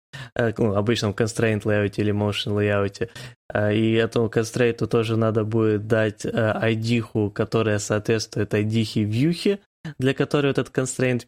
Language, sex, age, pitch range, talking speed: Ukrainian, male, 20-39, 110-130 Hz, 120 wpm